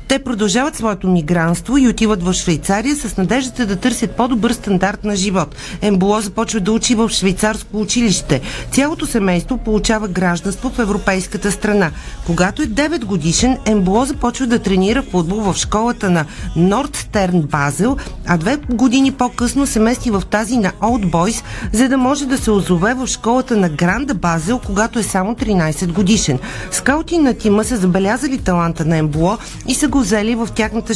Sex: female